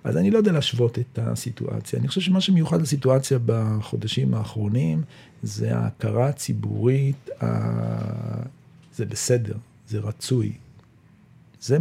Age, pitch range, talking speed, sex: 50-69, 110-130 Hz, 110 wpm, male